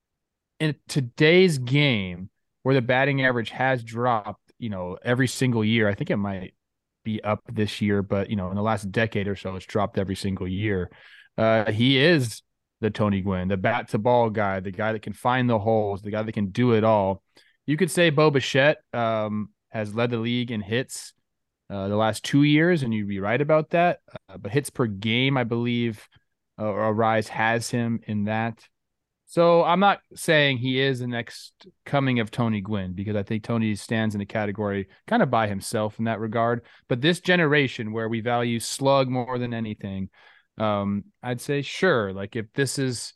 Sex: male